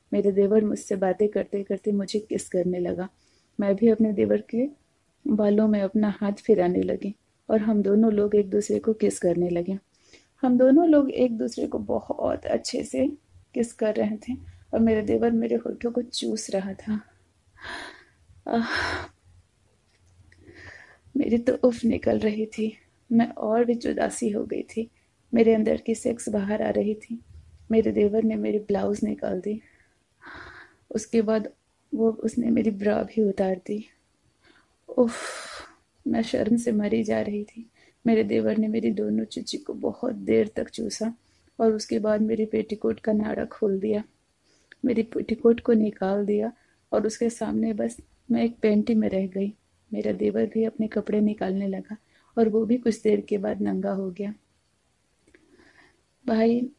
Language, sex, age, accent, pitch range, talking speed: Hindi, female, 30-49, native, 200-230 Hz, 160 wpm